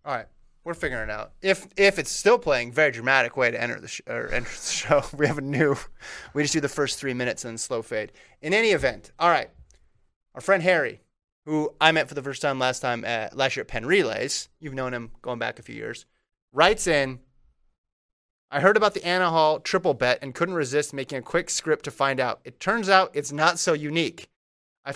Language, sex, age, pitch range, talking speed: English, male, 30-49, 125-155 Hz, 230 wpm